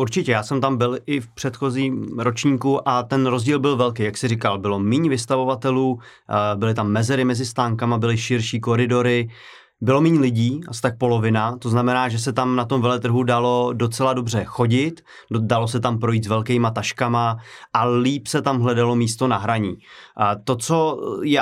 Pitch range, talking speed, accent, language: 115-130 Hz, 180 wpm, native, Czech